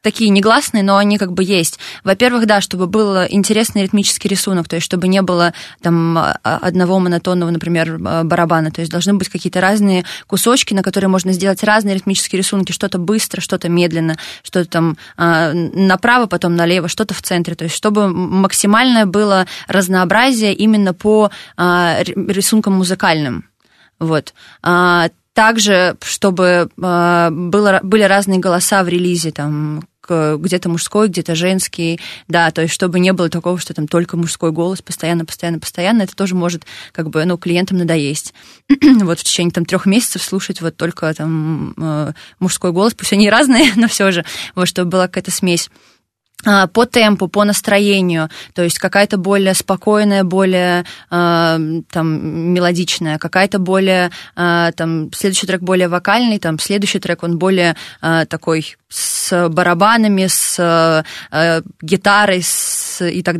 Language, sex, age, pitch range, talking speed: Russian, female, 20-39, 170-200 Hz, 135 wpm